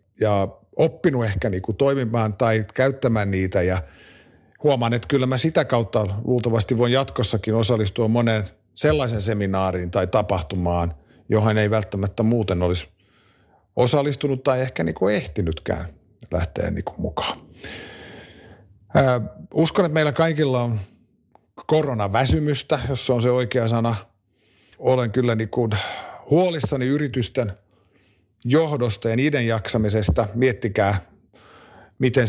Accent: native